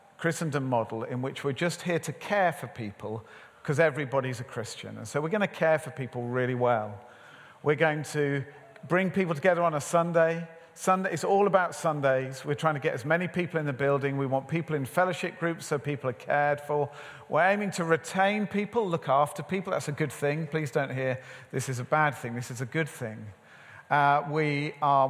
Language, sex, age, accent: English, male, 50-69, British